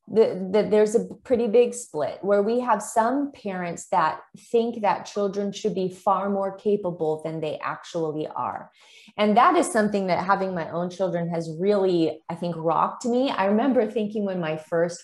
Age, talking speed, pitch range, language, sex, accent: 20-39, 185 wpm, 195-250 Hz, English, female, American